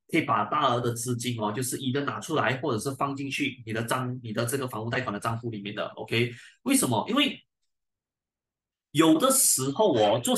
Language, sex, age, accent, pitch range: Chinese, male, 20-39, native, 120-185 Hz